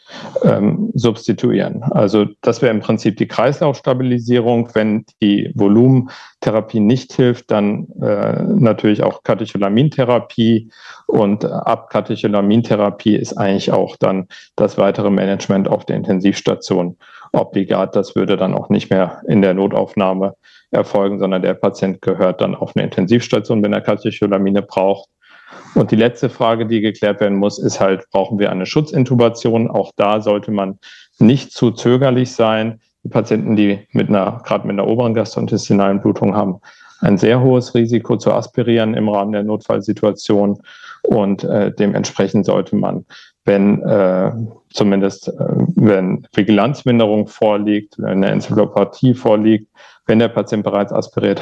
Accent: German